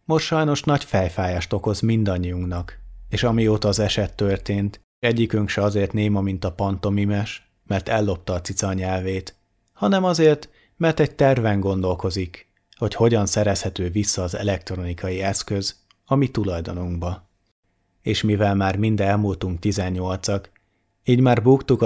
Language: Hungarian